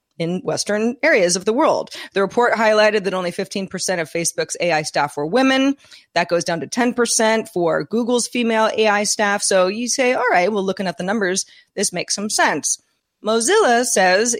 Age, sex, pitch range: 30-49, female, 175-225 Hz